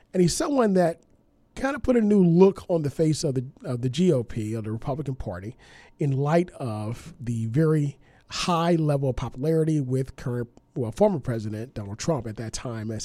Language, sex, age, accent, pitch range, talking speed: English, male, 40-59, American, 120-180 Hz, 195 wpm